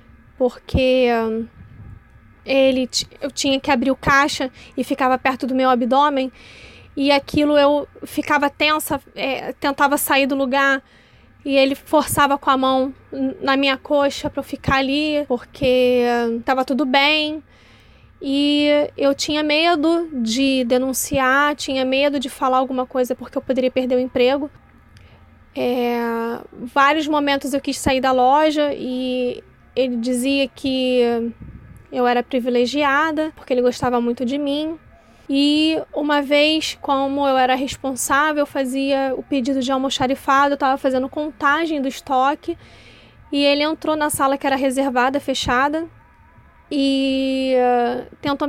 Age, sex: 20-39, female